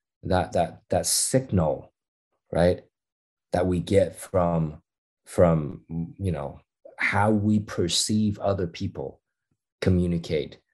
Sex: male